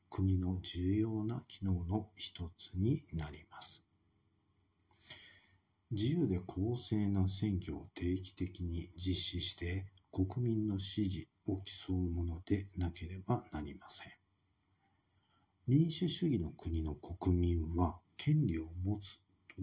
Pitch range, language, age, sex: 90-100 Hz, Japanese, 50-69, male